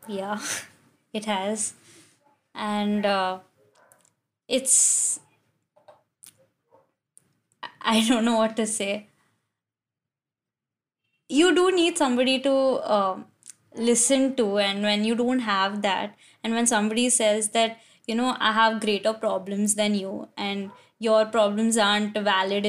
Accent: native